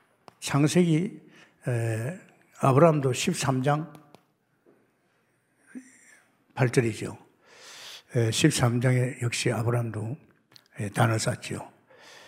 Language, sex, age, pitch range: Korean, male, 60-79, 115-160 Hz